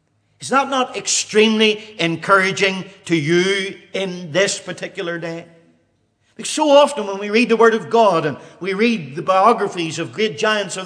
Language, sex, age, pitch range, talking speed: English, male, 50-69, 165-250 Hz, 165 wpm